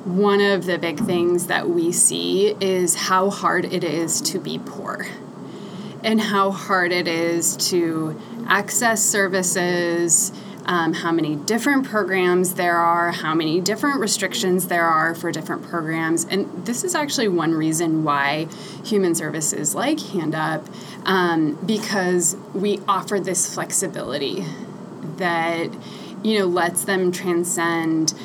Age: 20-39